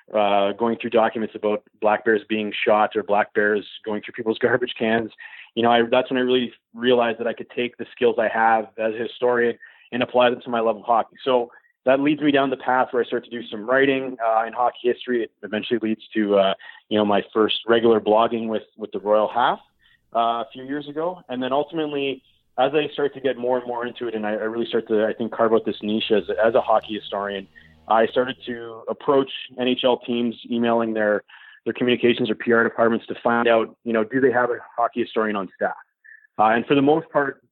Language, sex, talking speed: English, male, 230 wpm